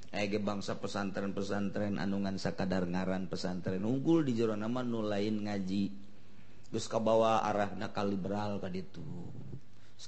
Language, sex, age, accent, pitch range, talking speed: Indonesian, male, 40-59, native, 100-140 Hz, 125 wpm